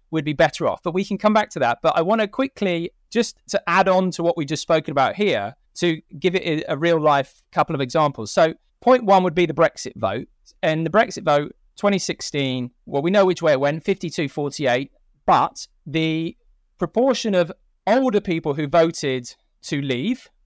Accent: British